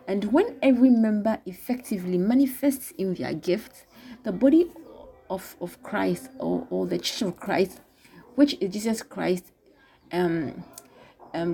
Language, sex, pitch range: English, female, 180-260 Hz